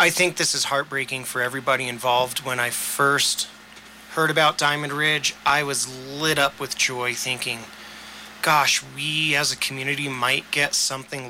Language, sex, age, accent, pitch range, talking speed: English, male, 30-49, American, 125-145 Hz, 160 wpm